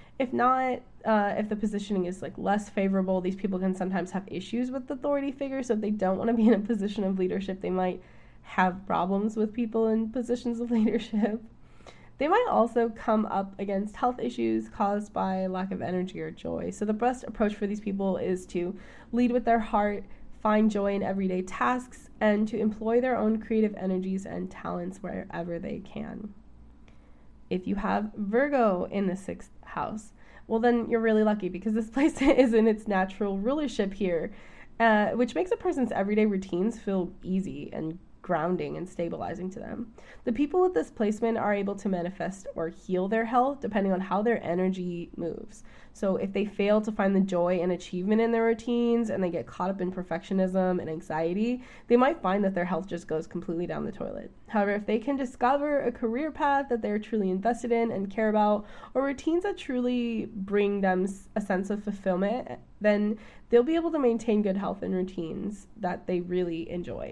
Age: 10-29